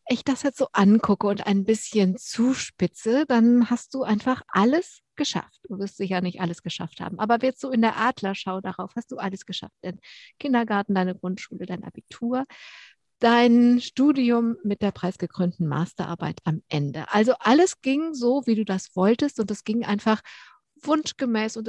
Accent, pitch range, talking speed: German, 185-245 Hz, 170 wpm